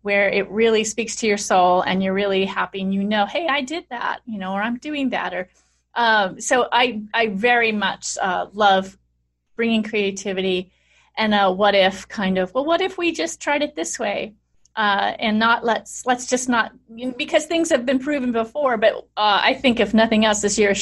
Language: English